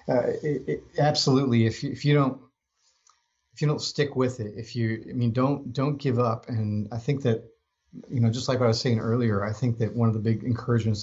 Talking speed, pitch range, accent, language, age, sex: 220 wpm, 110-125 Hz, American, English, 40-59, male